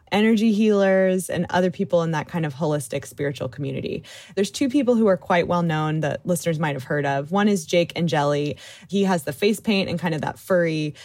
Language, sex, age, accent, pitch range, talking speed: English, female, 20-39, American, 150-195 Hz, 225 wpm